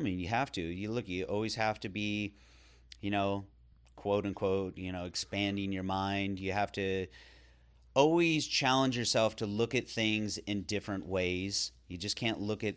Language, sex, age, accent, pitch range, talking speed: English, male, 30-49, American, 90-110 Hz, 185 wpm